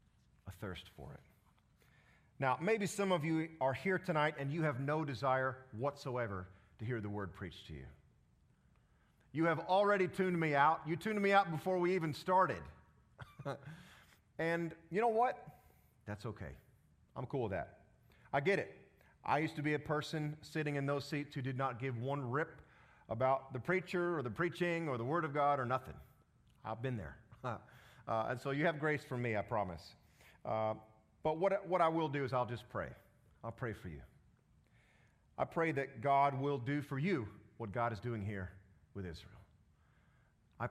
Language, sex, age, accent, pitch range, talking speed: English, male, 40-59, American, 100-150 Hz, 185 wpm